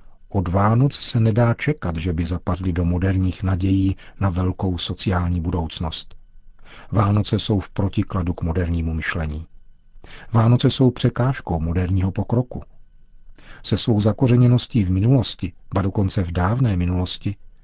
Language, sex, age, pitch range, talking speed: Czech, male, 50-69, 90-115 Hz, 125 wpm